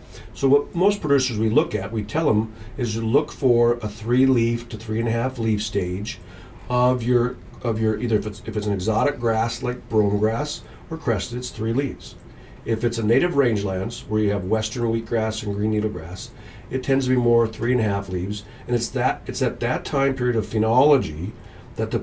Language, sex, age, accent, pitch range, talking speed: English, male, 50-69, American, 105-125 Hz, 220 wpm